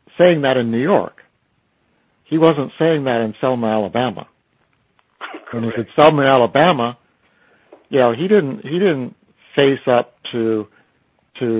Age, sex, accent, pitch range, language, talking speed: 60-79, male, American, 115-140 Hz, English, 140 wpm